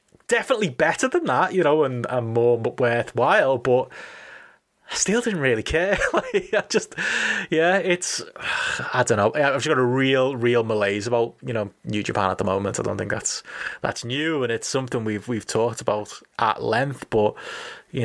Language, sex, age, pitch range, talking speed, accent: English, male, 20-39, 105-135 Hz, 185 wpm, British